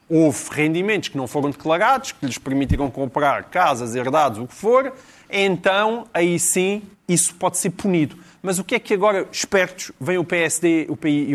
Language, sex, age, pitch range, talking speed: Portuguese, male, 30-49, 150-205 Hz, 175 wpm